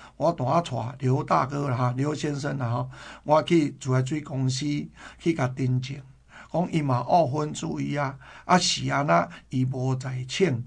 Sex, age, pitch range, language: male, 60-79, 125-160 Hz, Chinese